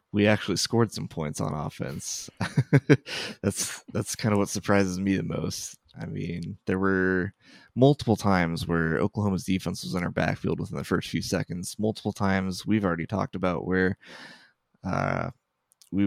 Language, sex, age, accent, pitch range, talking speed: English, male, 20-39, American, 90-105 Hz, 160 wpm